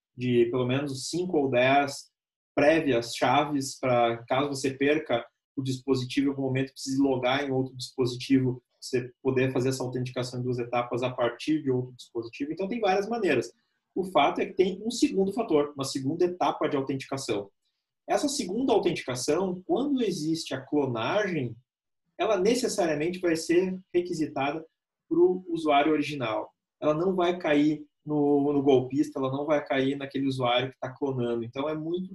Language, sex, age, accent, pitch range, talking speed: Portuguese, male, 30-49, Brazilian, 125-165 Hz, 160 wpm